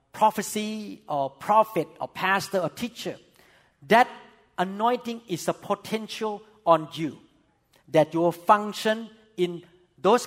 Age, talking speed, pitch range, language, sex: 50-69, 115 wpm, 160-235 Hz, English, male